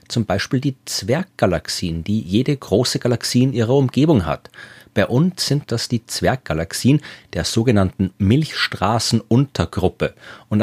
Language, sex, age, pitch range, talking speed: German, male, 30-49, 95-125 Hz, 125 wpm